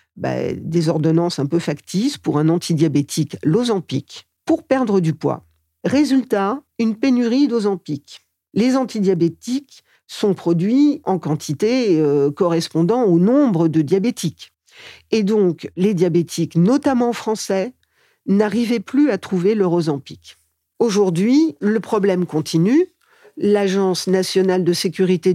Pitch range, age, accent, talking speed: 160-215 Hz, 50-69, French, 120 wpm